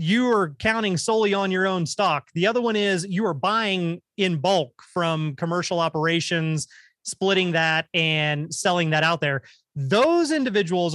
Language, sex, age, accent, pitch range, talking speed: English, male, 30-49, American, 170-215 Hz, 160 wpm